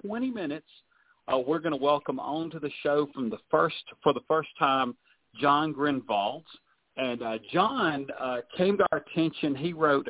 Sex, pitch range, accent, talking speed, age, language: male, 120-160 Hz, American, 160 wpm, 40-59, English